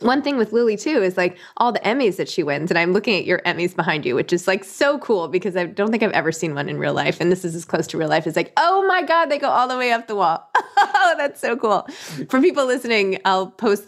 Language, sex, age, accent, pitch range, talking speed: English, female, 20-39, American, 175-240 Hz, 290 wpm